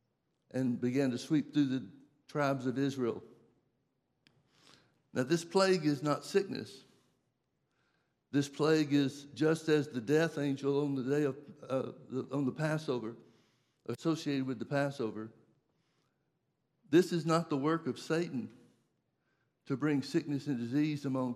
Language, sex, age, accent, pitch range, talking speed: English, male, 60-79, American, 130-155 Hz, 140 wpm